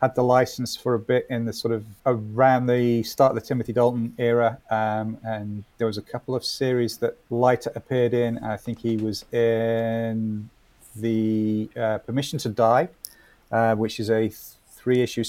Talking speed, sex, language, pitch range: 185 wpm, male, English, 110-125 Hz